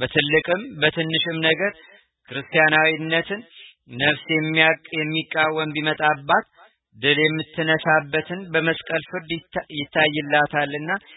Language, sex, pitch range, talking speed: Amharic, male, 150-160 Hz, 70 wpm